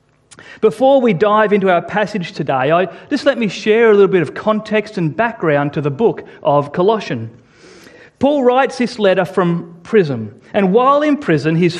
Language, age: English, 40-59